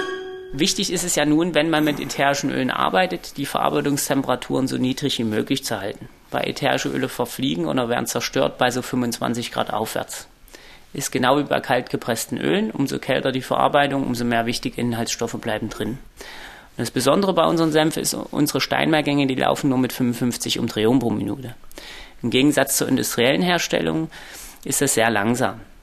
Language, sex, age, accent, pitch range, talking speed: German, male, 30-49, German, 120-145 Hz, 170 wpm